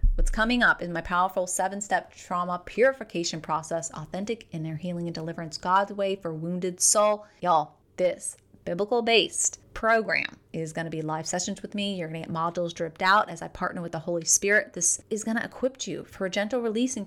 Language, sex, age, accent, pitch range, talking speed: English, female, 30-49, American, 175-220 Hz, 200 wpm